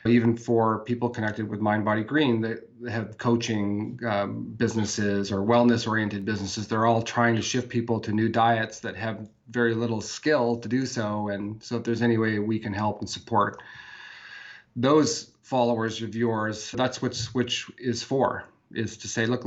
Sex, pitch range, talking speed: male, 105-120 Hz, 175 wpm